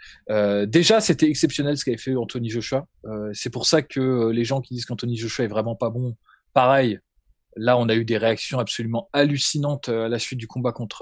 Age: 20-39